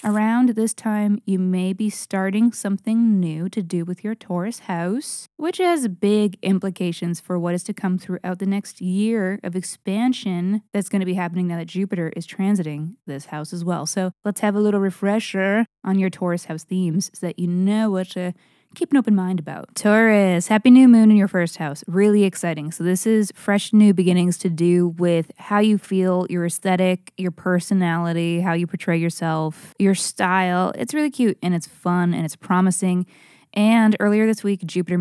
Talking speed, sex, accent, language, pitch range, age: 190 wpm, female, American, English, 175-210 Hz, 20-39